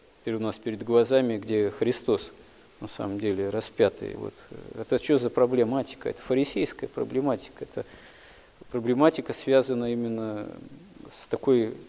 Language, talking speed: Russian, 125 wpm